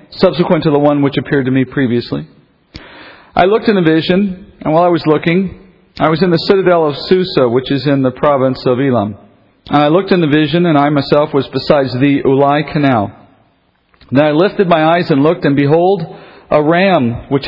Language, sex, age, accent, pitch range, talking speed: English, male, 40-59, American, 130-165 Hz, 205 wpm